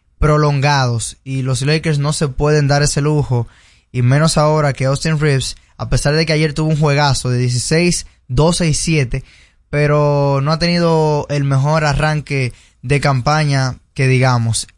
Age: 20-39